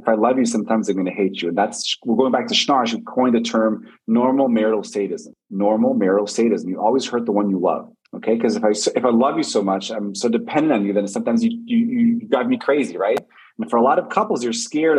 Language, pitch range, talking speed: English, 115-160 Hz, 265 wpm